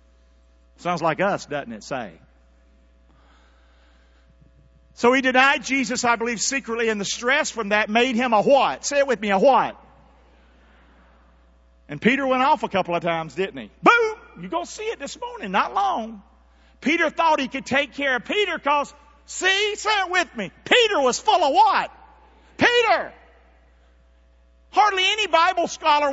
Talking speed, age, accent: 170 wpm, 50-69, American